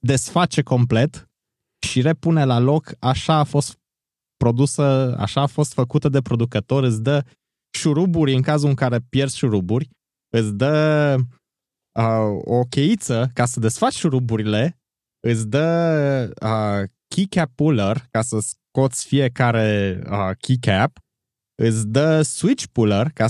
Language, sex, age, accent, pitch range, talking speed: Romanian, male, 20-39, native, 110-150 Hz, 125 wpm